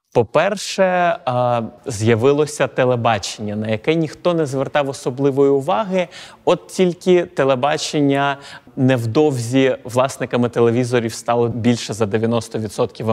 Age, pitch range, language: 20-39, 115-150 Hz, Ukrainian